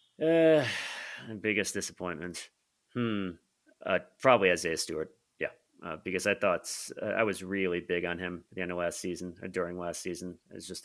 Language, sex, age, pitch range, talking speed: English, male, 30-49, 85-95 Hz, 175 wpm